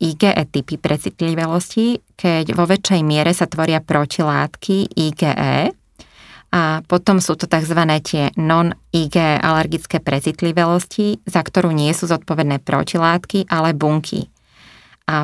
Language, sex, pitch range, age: Slovak, female, 155-180 Hz, 20-39